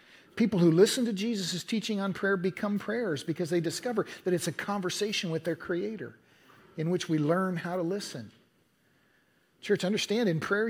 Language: English